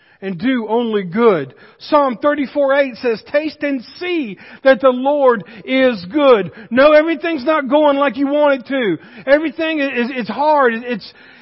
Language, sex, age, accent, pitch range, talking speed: English, male, 50-69, American, 235-295 Hz, 160 wpm